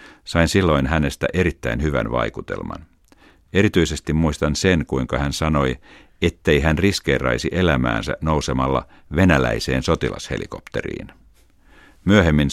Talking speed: 95 wpm